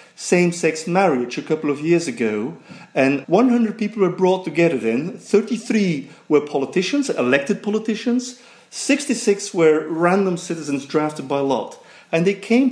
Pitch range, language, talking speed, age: 140-200 Hz, English, 135 wpm, 40-59